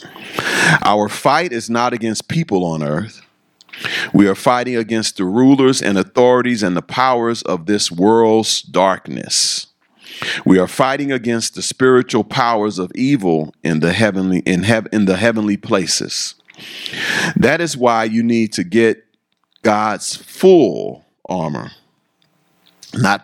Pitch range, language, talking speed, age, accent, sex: 100-125 Hz, English, 135 wpm, 40-59, American, male